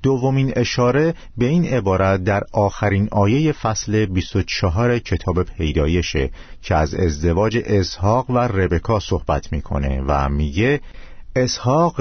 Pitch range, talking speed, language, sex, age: 85-120 Hz, 115 wpm, Persian, male, 50-69